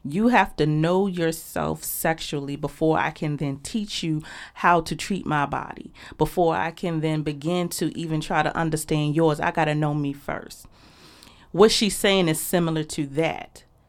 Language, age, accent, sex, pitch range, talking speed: English, 30-49, American, female, 155-185 Hz, 175 wpm